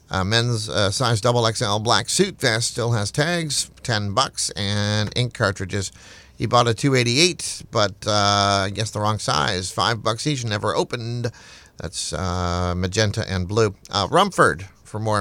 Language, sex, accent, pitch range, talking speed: English, male, American, 100-125 Hz, 165 wpm